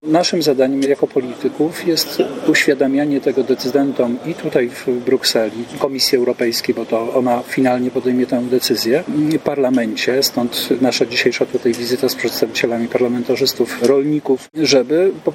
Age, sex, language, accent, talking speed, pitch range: 40-59, male, Polish, native, 135 wpm, 125-145 Hz